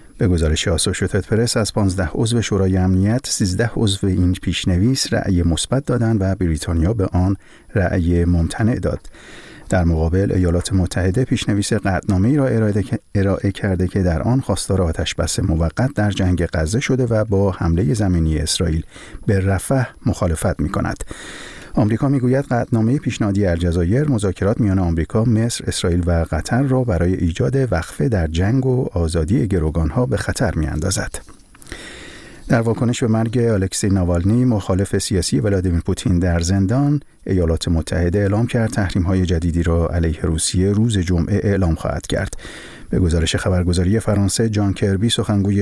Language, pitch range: Persian, 90-115 Hz